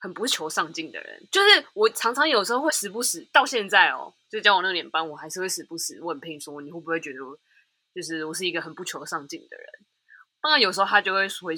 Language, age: Chinese, 20-39